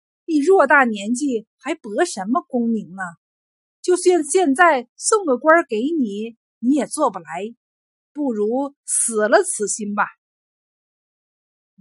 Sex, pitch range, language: female, 205-300 Hz, Chinese